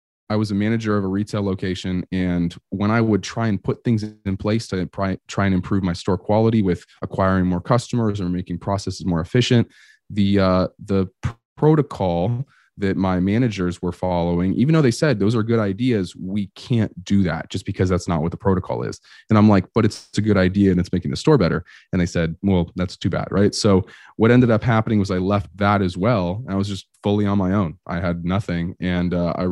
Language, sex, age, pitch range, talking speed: English, male, 20-39, 95-110 Hz, 220 wpm